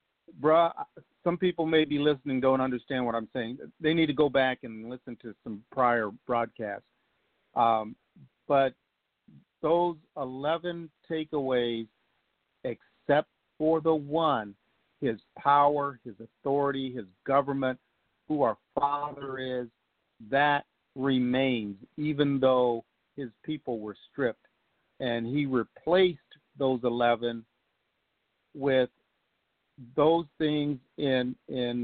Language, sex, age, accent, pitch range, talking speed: English, male, 50-69, American, 120-155 Hz, 110 wpm